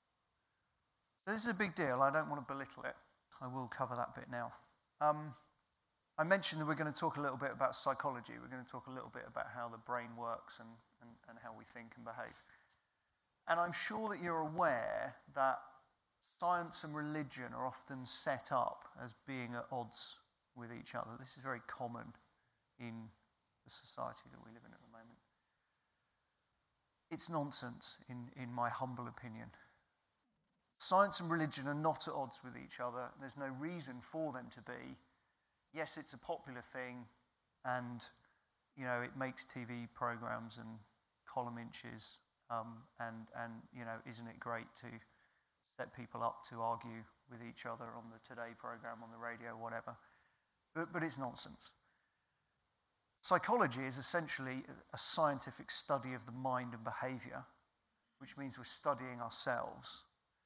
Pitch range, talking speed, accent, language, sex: 115-140 Hz, 165 wpm, British, English, male